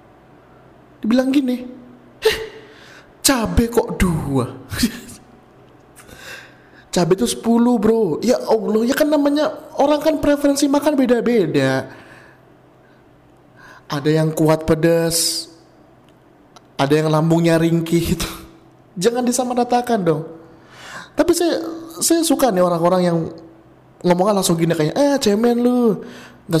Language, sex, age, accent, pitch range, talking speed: Indonesian, male, 20-39, native, 155-235 Hz, 105 wpm